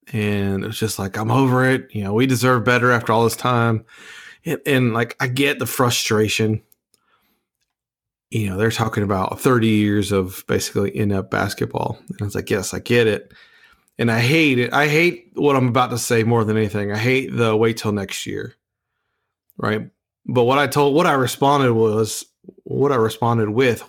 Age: 30-49